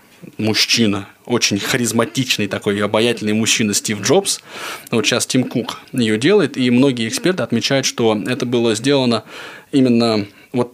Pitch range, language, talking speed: 115-155 Hz, Russian, 135 wpm